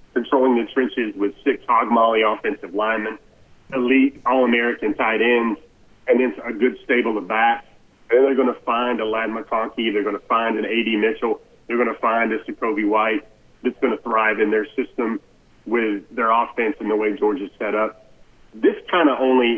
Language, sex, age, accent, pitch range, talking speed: English, male, 40-59, American, 110-130 Hz, 195 wpm